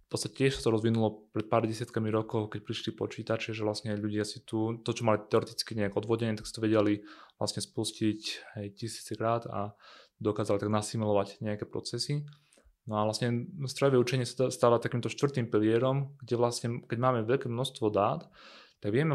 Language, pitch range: Slovak, 110-120 Hz